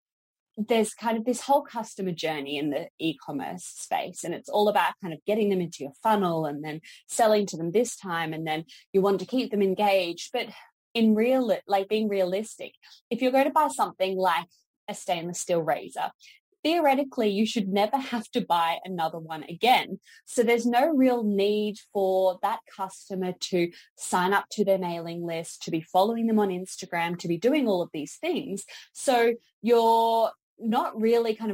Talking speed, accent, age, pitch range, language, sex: 185 wpm, Australian, 20-39, 175-225 Hz, English, female